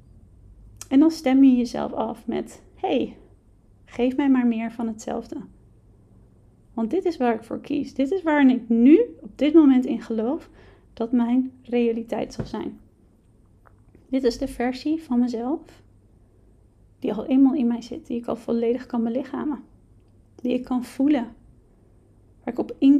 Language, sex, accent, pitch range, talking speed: Dutch, female, Dutch, 230-275 Hz, 160 wpm